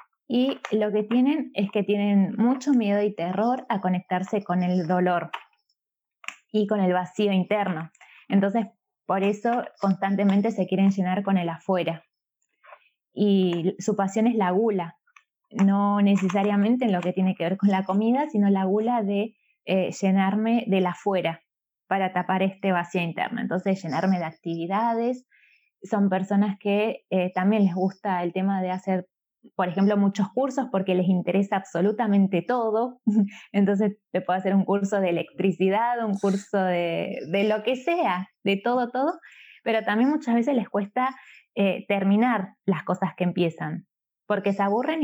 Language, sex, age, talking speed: Spanish, female, 20-39, 155 wpm